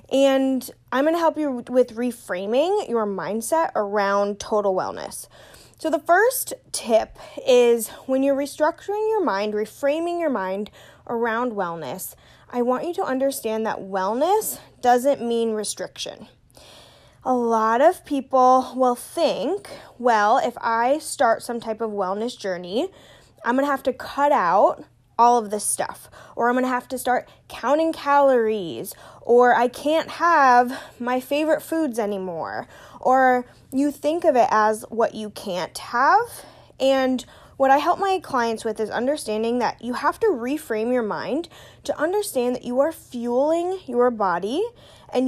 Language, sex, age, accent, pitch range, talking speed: English, female, 10-29, American, 225-300 Hz, 150 wpm